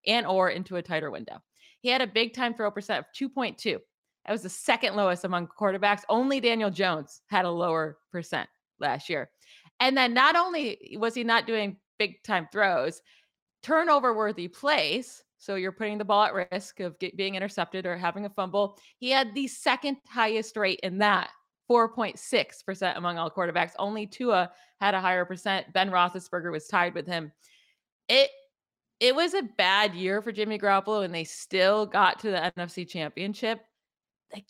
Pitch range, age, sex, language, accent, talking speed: 185-225 Hz, 20-39, female, English, American, 175 wpm